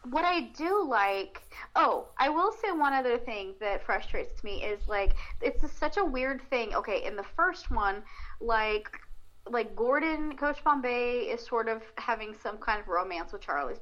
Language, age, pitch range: English, 30-49, 210-260 Hz